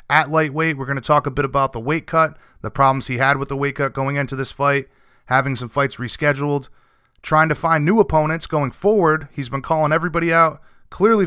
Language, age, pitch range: English, 30-49, 130-155 Hz